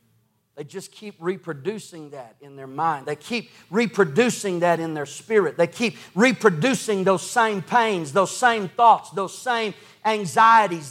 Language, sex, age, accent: English, male, 40-59, American